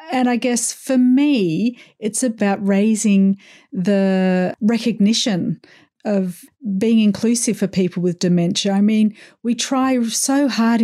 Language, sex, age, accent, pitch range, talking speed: English, female, 40-59, Australian, 180-230 Hz, 125 wpm